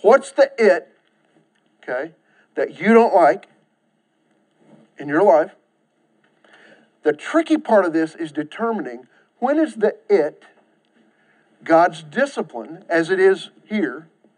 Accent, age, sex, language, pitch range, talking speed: American, 50-69, male, English, 190-240 Hz, 115 wpm